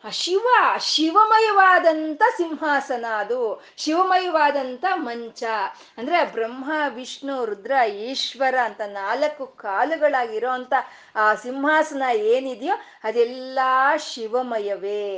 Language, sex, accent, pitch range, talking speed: Kannada, female, native, 225-320 Hz, 75 wpm